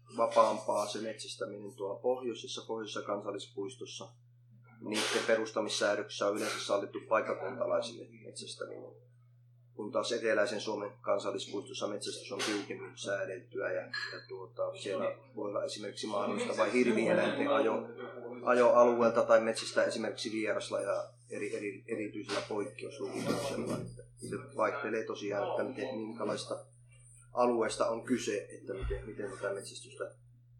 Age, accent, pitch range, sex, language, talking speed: 30-49, native, 110-120 Hz, male, Finnish, 110 wpm